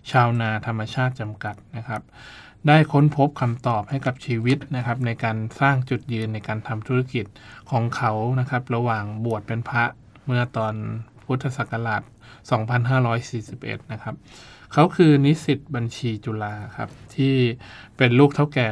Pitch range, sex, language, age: 110-135 Hz, male, Thai, 20-39